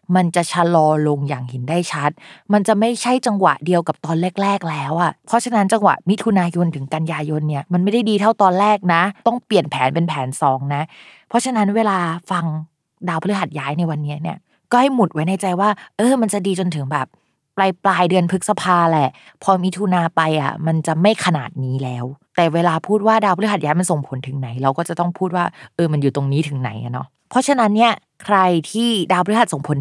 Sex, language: female, Thai